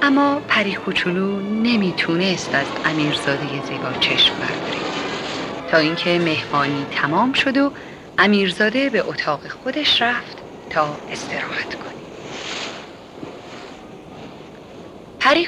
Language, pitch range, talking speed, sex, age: Persian, 165-275 Hz, 95 wpm, female, 40-59